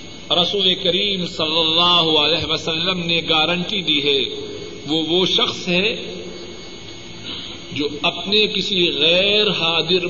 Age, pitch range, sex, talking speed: 50-69, 165-220 Hz, male, 115 wpm